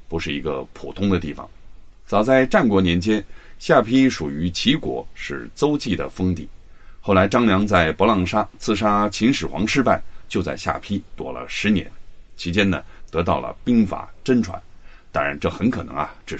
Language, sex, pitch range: Chinese, male, 85-115 Hz